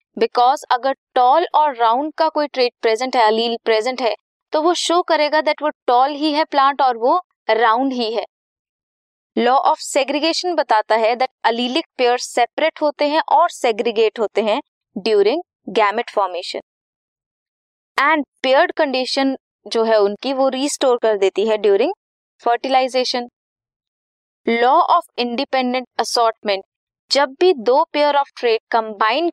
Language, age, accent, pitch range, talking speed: Hindi, 20-39, native, 225-310 Hz, 135 wpm